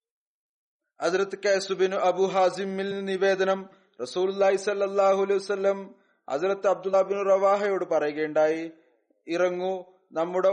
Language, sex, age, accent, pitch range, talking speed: Malayalam, male, 30-49, native, 180-195 Hz, 110 wpm